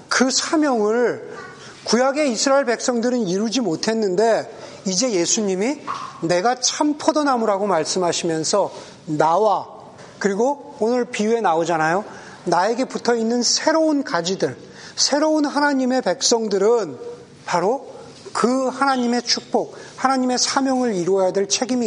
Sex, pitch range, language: male, 190-275 Hz, Korean